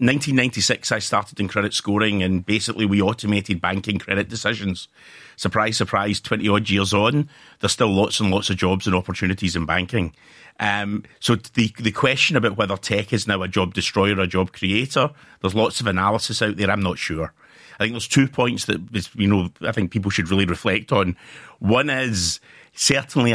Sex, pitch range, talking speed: male, 95-115 Hz, 190 wpm